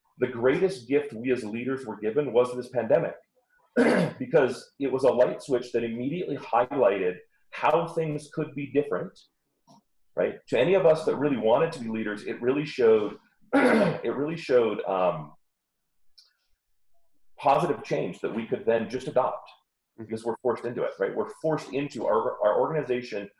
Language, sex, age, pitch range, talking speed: English, male, 40-59, 120-190 Hz, 160 wpm